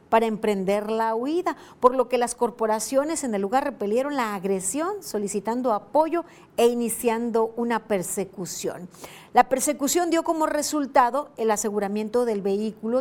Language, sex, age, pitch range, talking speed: Spanish, female, 40-59, 205-265 Hz, 140 wpm